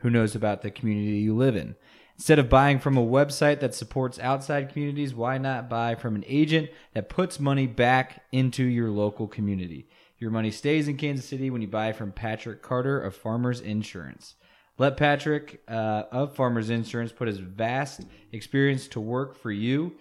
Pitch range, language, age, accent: 105-135 Hz, English, 20-39, American